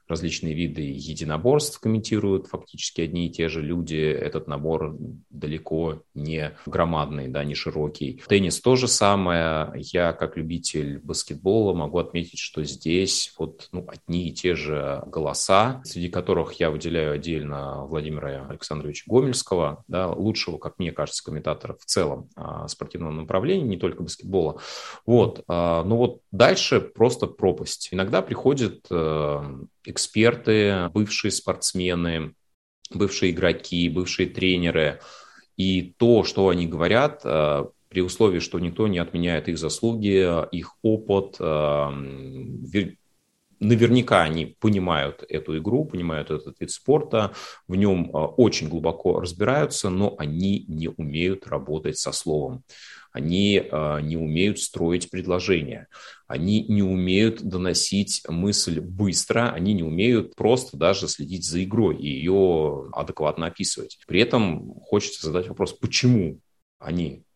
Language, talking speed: Russian, 125 wpm